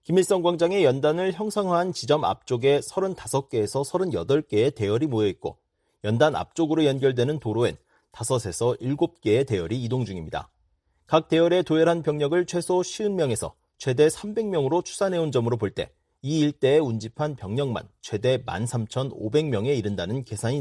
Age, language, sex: 40-59, Korean, male